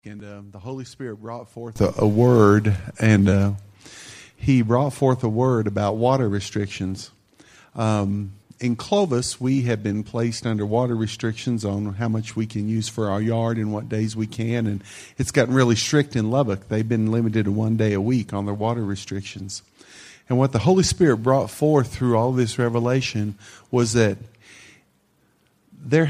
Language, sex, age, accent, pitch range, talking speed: English, male, 50-69, American, 105-140 Hz, 175 wpm